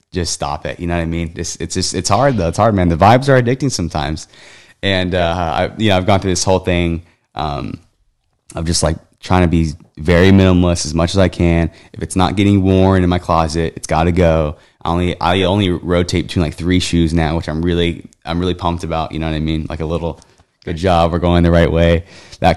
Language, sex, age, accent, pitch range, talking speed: English, male, 20-39, American, 85-100 Hz, 245 wpm